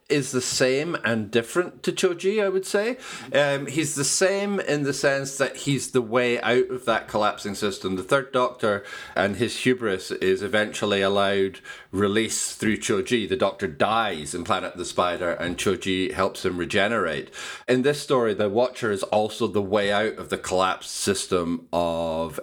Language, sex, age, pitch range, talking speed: English, male, 40-59, 95-145 Hz, 175 wpm